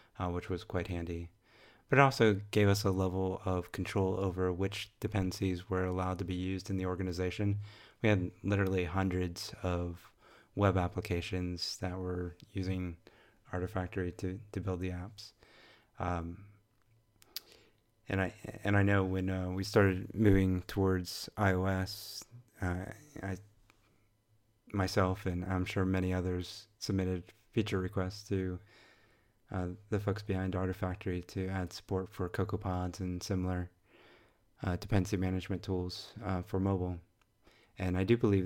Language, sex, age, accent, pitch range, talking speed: English, male, 30-49, American, 90-105 Hz, 135 wpm